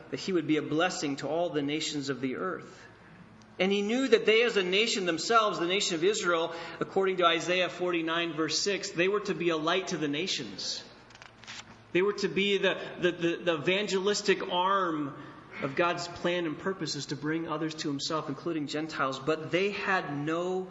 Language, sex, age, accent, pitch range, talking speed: English, male, 30-49, American, 120-170 Hz, 190 wpm